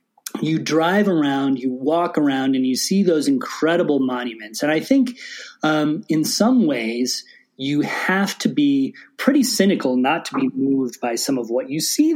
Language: English